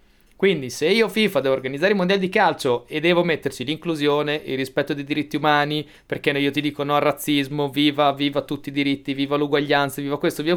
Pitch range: 140-200 Hz